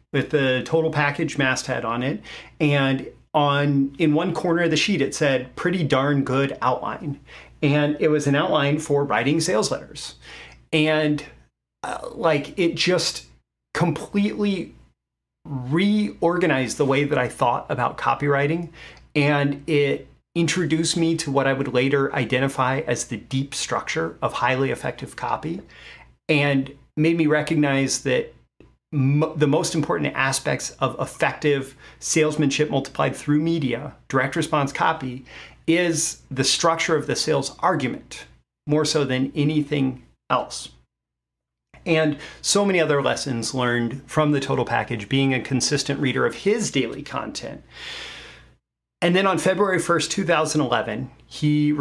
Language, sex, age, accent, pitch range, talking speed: English, male, 30-49, American, 130-155 Hz, 135 wpm